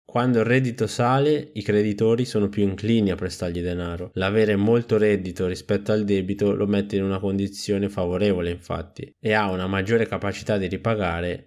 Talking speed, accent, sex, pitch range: 165 wpm, native, male, 95-110 Hz